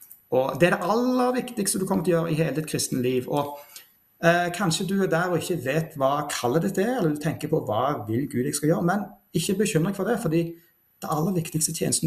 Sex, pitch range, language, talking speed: male, 140-185 Hz, English, 260 wpm